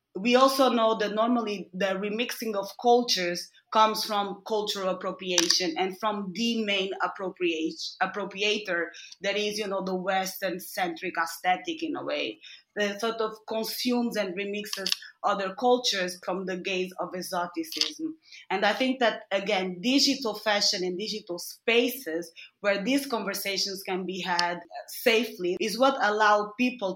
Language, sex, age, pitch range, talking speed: English, female, 20-39, 185-220 Hz, 140 wpm